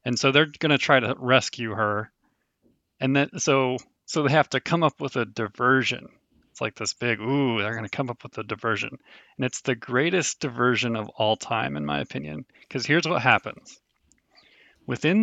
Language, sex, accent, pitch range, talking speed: English, male, American, 115-145 Hz, 195 wpm